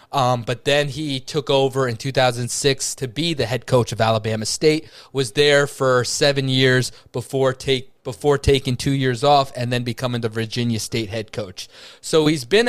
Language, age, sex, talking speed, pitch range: English, 20-39, male, 185 wpm, 125-145 Hz